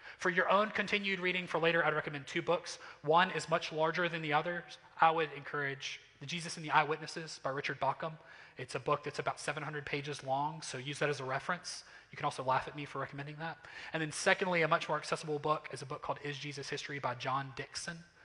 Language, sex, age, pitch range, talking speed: English, male, 30-49, 140-185 Hz, 230 wpm